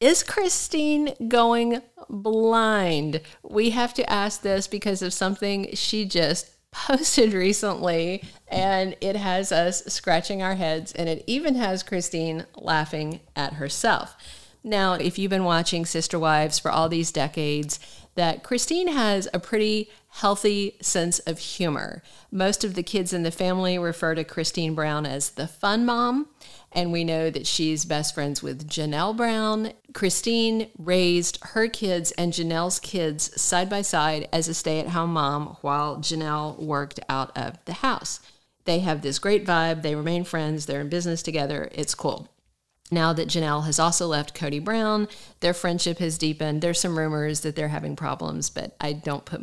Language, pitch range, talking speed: English, 155-195 Hz, 165 wpm